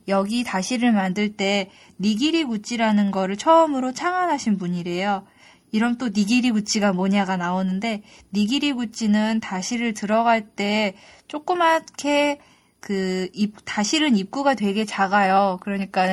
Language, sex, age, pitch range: Korean, female, 20-39, 195-250 Hz